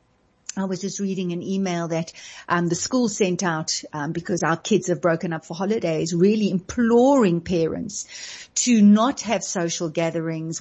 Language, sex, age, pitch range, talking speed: English, female, 50-69, 185-230 Hz, 165 wpm